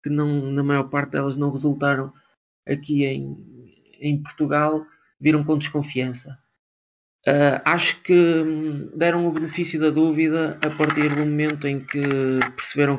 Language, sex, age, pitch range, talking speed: Portuguese, male, 20-39, 130-150 Hz, 130 wpm